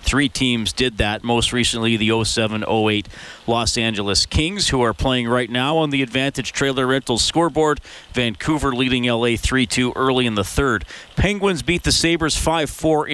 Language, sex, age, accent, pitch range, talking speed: English, male, 40-59, American, 120-150 Hz, 160 wpm